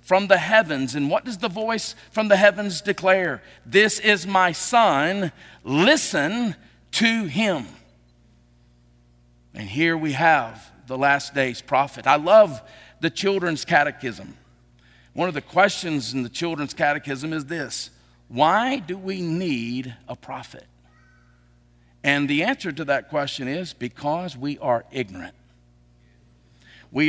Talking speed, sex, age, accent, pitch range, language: 135 wpm, male, 50-69, American, 135-205 Hz, English